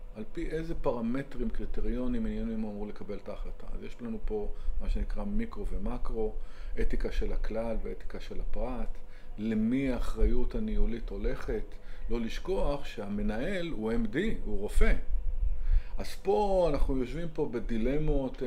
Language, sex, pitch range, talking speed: Hebrew, male, 110-145 Hz, 135 wpm